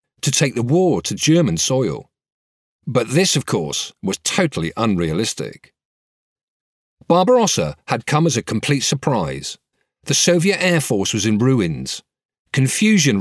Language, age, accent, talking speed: English, 50-69, British, 130 wpm